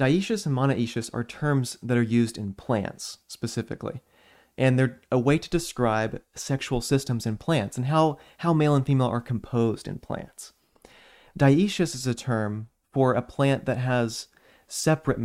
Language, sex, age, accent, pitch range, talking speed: English, male, 30-49, American, 115-140 Hz, 160 wpm